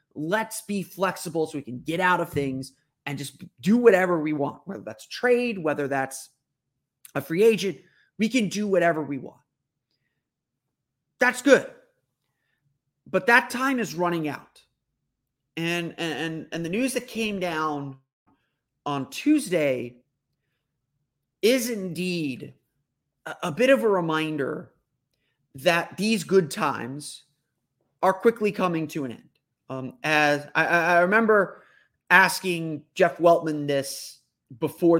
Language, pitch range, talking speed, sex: English, 140-190 Hz, 125 wpm, male